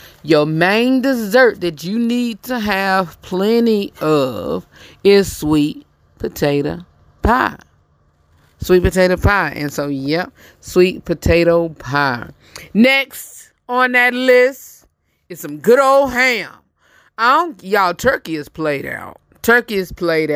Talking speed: 125 wpm